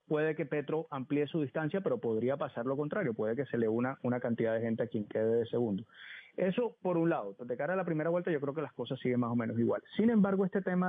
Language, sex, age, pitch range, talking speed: Spanish, male, 30-49, 120-160 Hz, 270 wpm